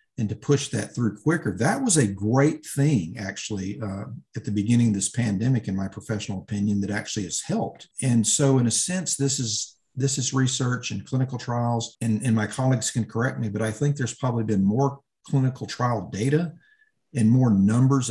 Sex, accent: male, American